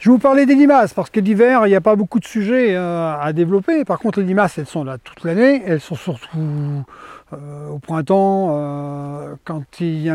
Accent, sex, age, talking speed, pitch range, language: French, male, 40-59, 230 wpm, 160-220 Hz, French